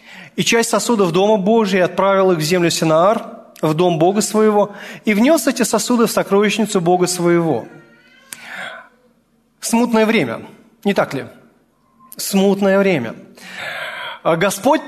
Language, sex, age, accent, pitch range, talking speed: Russian, male, 30-49, native, 190-240 Hz, 120 wpm